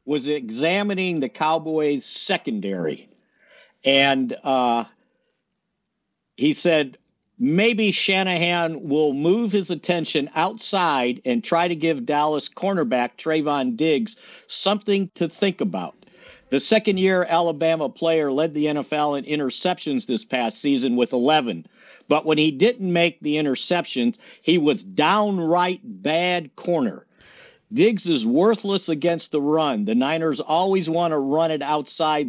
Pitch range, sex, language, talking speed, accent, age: 150-190 Hz, male, English, 125 wpm, American, 50-69